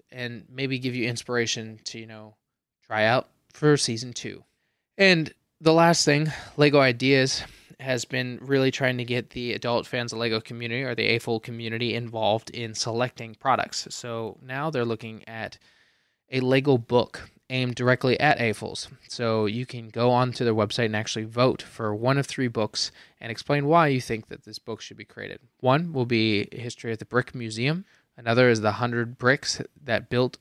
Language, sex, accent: English, male, American